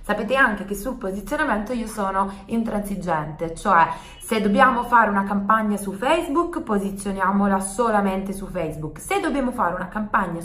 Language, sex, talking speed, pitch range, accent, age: Italian, female, 145 wpm, 185-260 Hz, native, 20-39